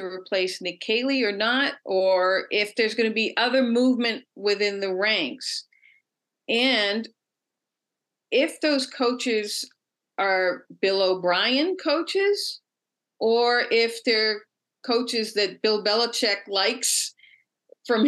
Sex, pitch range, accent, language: female, 195-265 Hz, American, English